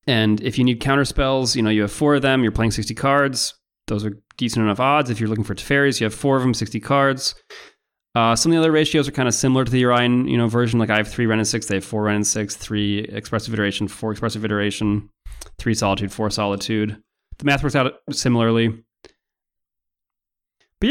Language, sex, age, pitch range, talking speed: English, male, 30-49, 105-135 Hz, 225 wpm